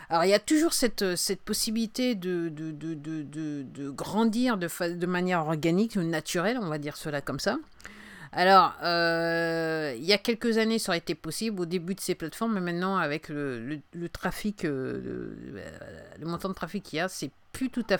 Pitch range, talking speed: 165-215 Hz, 215 wpm